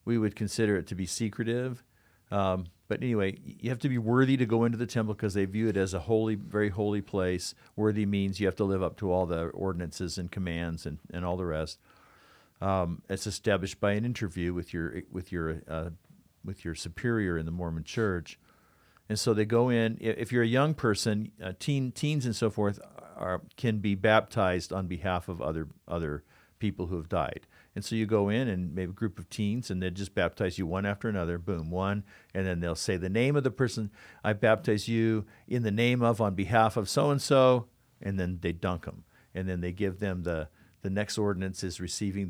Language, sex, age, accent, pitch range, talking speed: English, male, 50-69, American, 90-110 Hz, 215 wpm